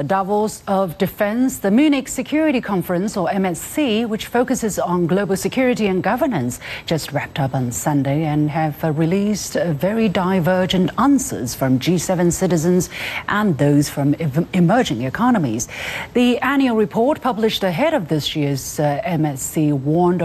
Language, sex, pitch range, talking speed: English, female, 150-225 Hz, 145 wpm